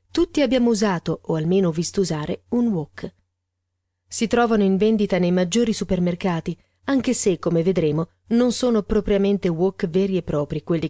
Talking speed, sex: 155 wpm, female